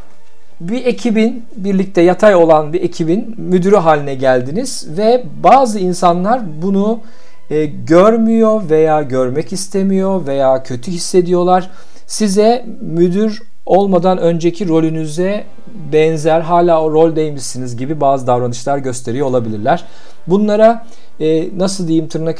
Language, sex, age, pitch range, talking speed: Turkish, male, 50-69, 135-180 Hz, 110 wpm